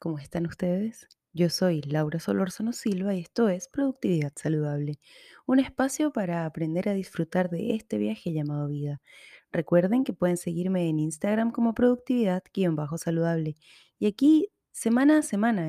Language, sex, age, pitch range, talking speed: Spanish, female, 20-39, 175-225 Hz, 140 wpm